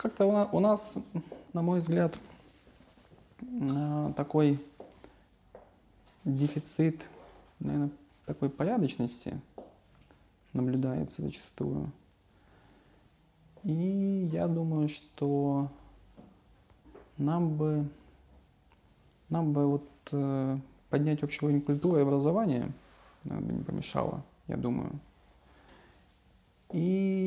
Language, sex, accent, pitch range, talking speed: Russian, male, native, 135-160 Hz, 65 wpm